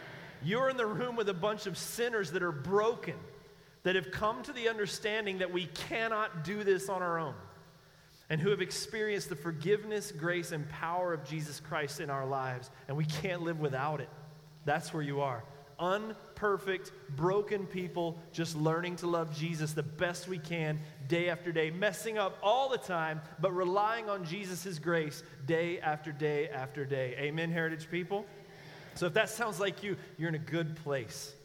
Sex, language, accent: male, English, American